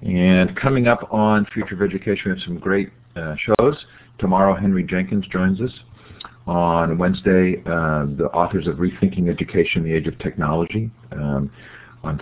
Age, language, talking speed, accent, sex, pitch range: 50-69, English, 155 wpm, American, male, 80-100 Hz